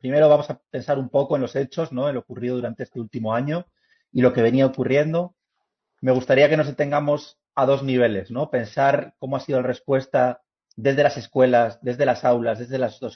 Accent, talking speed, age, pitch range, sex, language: Spanish, 205 wpm, 30-49, 120-150 Hz, male, English